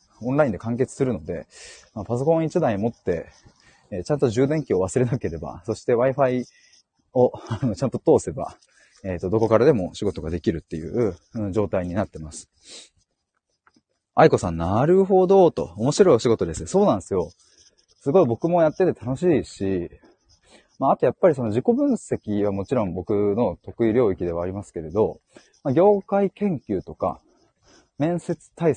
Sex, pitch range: male, 95-155 Hz